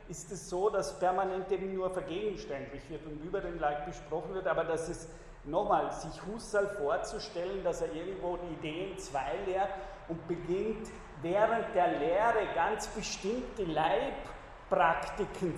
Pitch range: 150-195 Hz